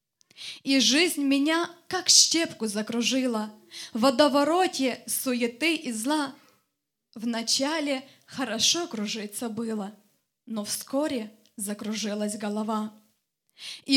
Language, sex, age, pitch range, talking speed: Russian, female, 20-39, 230-315 Hz, 80 wpm